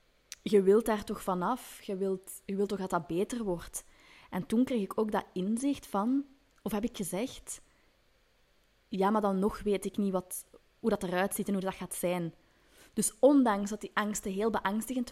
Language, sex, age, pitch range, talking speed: Dutch, female, 20-39, 185-230 Hz, 190 wpm